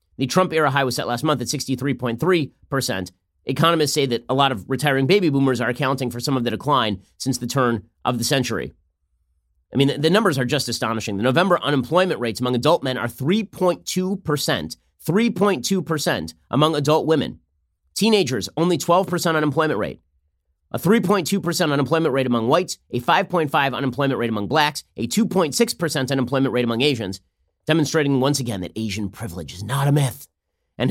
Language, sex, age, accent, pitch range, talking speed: English, male, 30-49, American, 110-160 Hz, 165 wpm